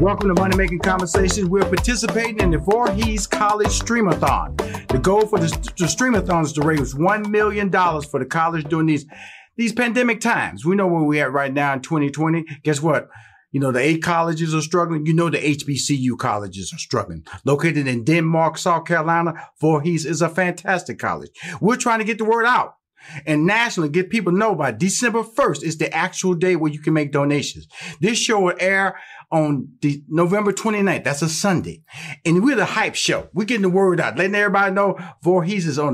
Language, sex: English, male